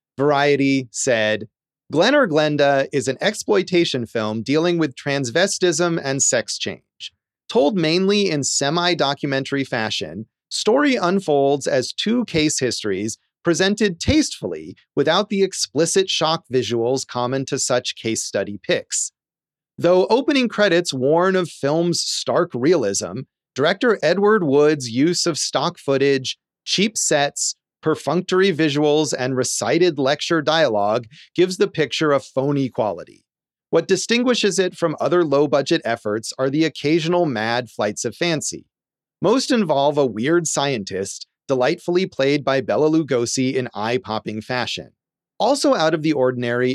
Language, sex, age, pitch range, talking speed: English, male, 30-49, 130-175 Hz, 130 wpm